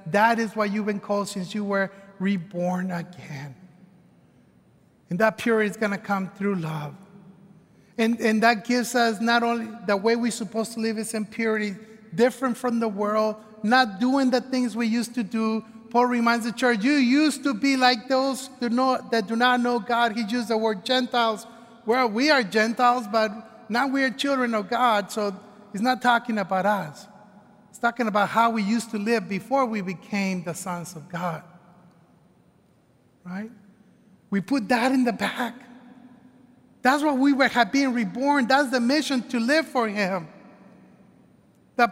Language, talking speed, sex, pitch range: English, 175 wpm, male, 205-255 Hz